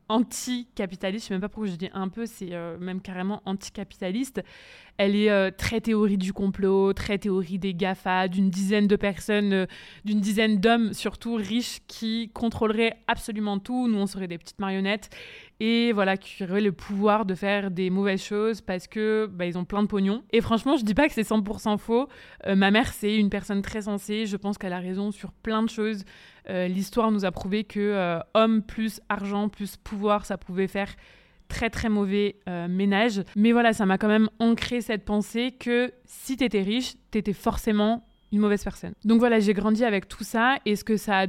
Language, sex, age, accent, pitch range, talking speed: French, female, 20-39, French, 195-225 Hz, 210 wpm